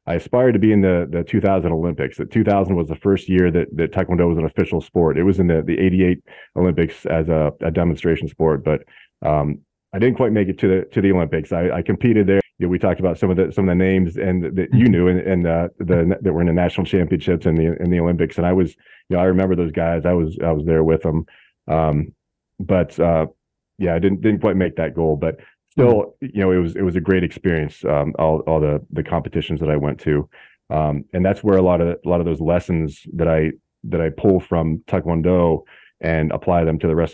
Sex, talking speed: male, 250 wpm